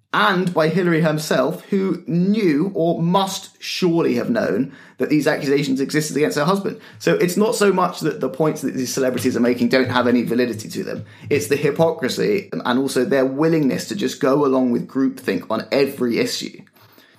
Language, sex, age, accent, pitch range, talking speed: English, male, 20-39, British, 125-160 Hz, 185 wpm